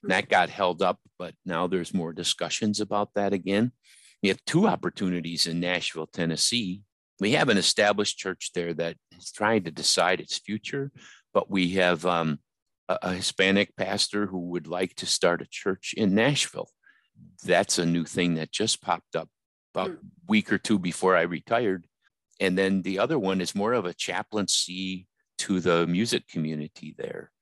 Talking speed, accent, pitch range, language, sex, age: 175 wpm, American, 90-105 Hz, English, male, 50-69